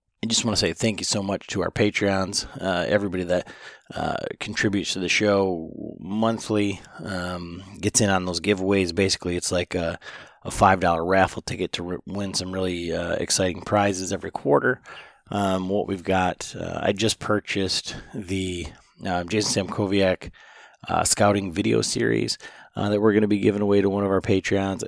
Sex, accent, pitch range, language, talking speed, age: male, American, 90-100 Hz, English, 180 wpm, 30-49